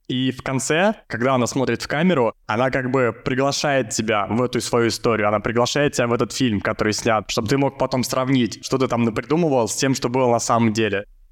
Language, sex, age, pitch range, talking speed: Russian, male, 20-39, 115-130 Hz, 215 wpm